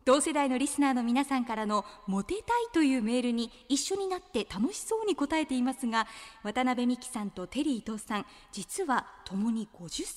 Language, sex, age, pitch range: Japanese, female, 20-39, 215-325 Hz